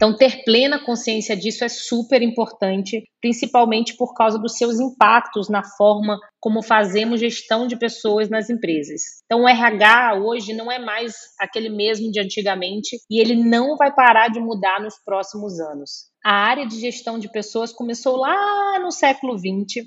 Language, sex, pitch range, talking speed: Portuguese, female, 210-245 Hz, 165 wpm